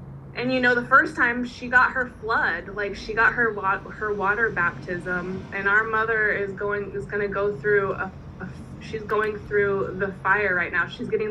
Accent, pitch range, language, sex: American, 185-220 Hz, English, female